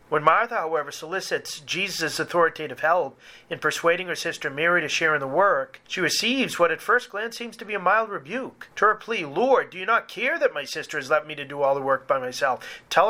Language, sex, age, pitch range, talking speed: English, male, 40-59, 155-205 Hz, 235 wpm